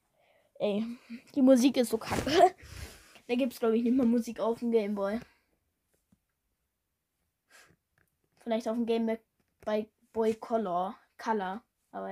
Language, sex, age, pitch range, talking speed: German, female, 10-29, 220-275 Hz, 125 wpm